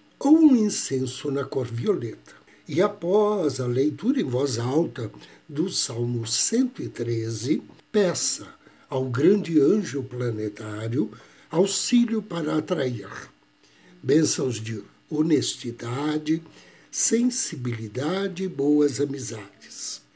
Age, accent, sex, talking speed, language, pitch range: 60-79, Brazilian, male, 90 wpm, Portuguese, 120-180 Hz